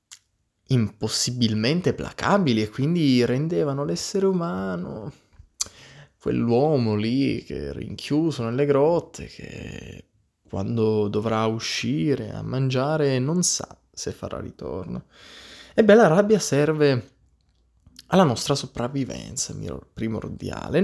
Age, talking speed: 20-39, 100 wpm